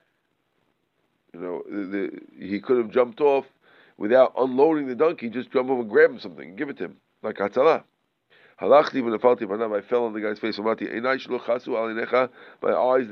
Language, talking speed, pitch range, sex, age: English, 155 wpm, 115-135 Hz, male, 50-69